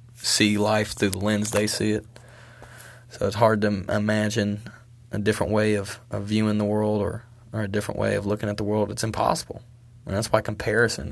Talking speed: 205 wpm